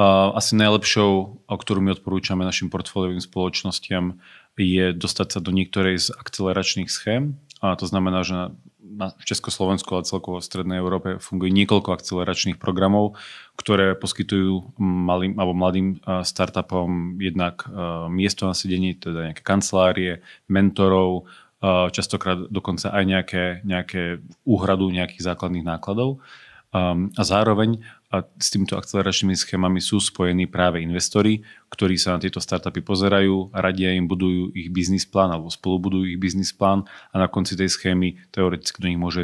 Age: 30-49